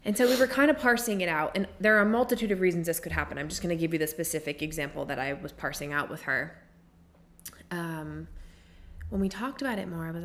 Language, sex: English, female